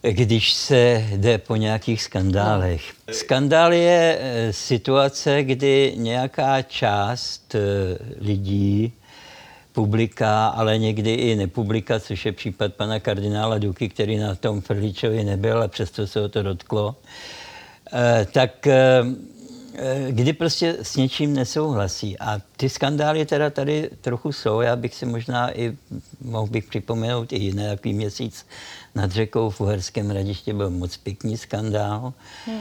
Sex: male